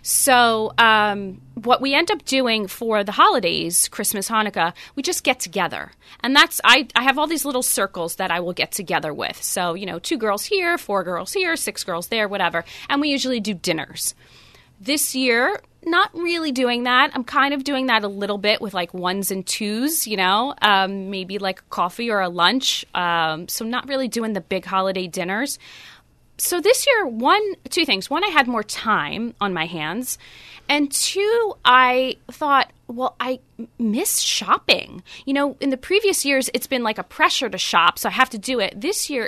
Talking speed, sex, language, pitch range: 200 wpm, female, English, 195-270 Hz